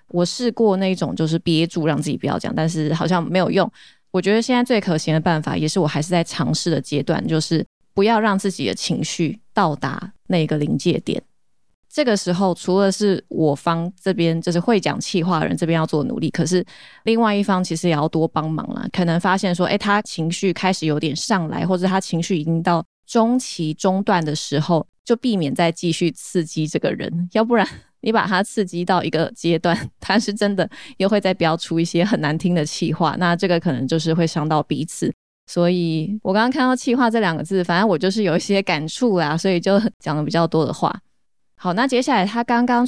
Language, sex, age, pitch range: Chinese, female, 20-39, 165-205 Hz